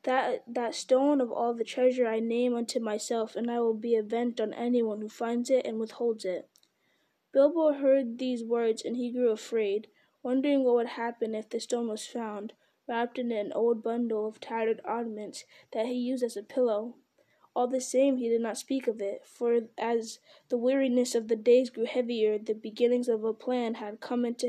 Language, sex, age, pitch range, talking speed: English, female, 20-39, 225-250 Hz, 200 wpm